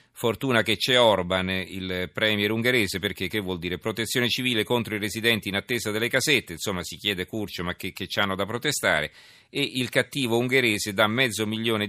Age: 40-59